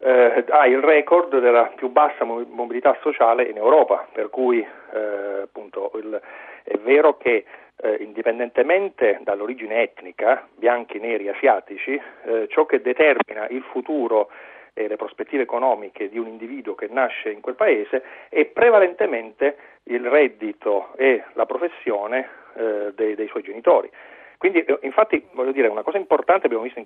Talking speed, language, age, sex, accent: 150 wpm, Italian, 40-59, male, native